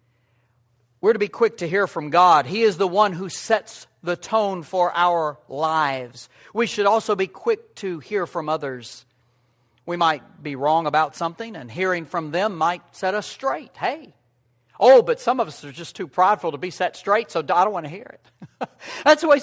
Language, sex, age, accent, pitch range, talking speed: English, male, 60-79, American, 120-205 Hz, 205 wpm